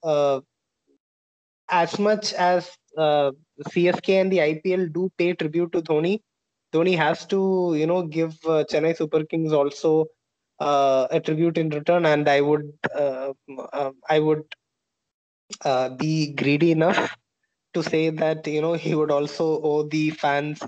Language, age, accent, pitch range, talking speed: English, 20-39, Indian, 145-175 Hz, 150 wpm